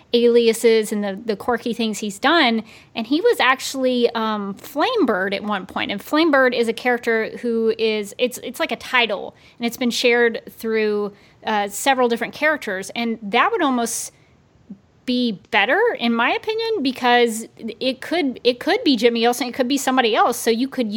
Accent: American